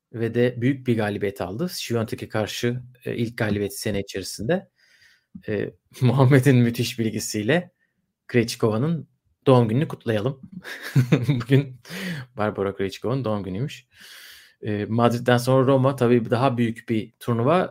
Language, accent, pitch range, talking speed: Turkish, native, 115-135 Hz, 120 wpm